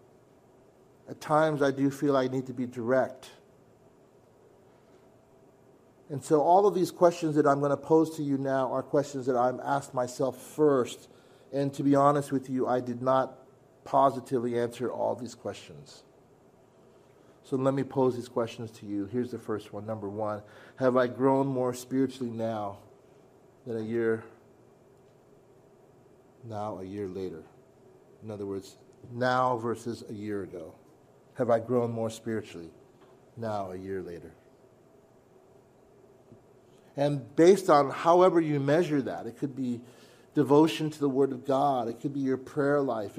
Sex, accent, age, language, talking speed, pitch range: male, American, 40-59, English, 155 wpm, 120-140 Hz